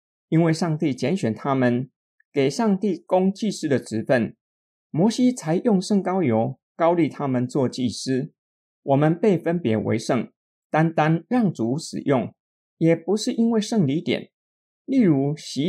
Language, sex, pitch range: Chinese, male, 125-175 Hz